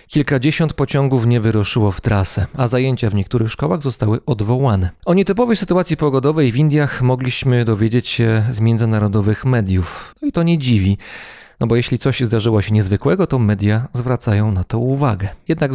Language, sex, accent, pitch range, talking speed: Polish, male, native, 110-140 Hz, 165 wpm